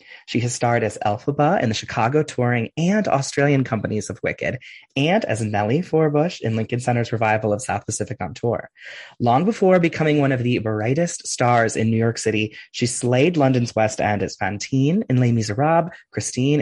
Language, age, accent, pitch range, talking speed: English, 20-39, American, 110-150 Hz, 180 wpm